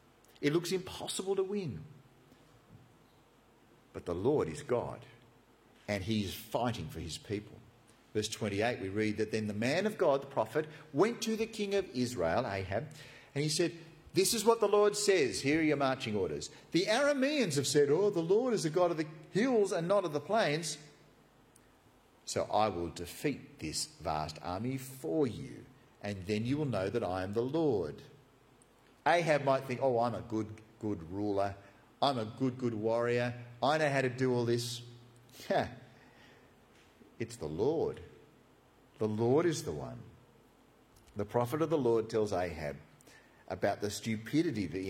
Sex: male